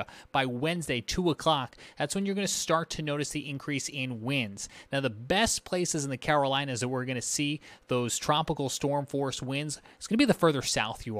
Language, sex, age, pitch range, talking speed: English, male, 30-49, 120-145 Hz, 220 wpm